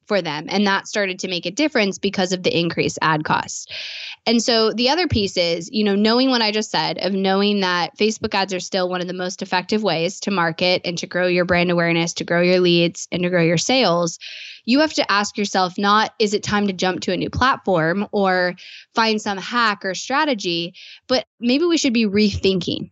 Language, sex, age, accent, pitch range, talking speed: English, female, 10-29, American, 180-225 Hz, 225 wpm